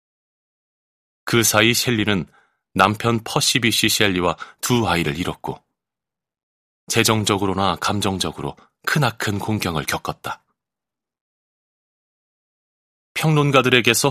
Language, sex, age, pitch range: Korean, male, 30-49, 90-115 Hz